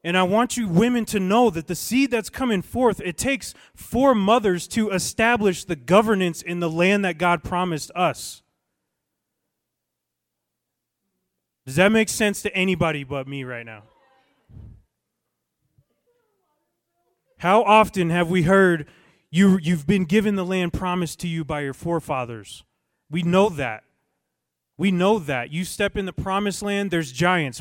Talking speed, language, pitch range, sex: 150 wpm, English, 135-185 Hz, male